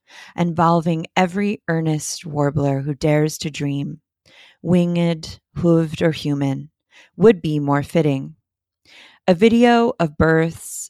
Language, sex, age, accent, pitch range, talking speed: English, female, 30-49, American, 145-170 Hz, 110 wpm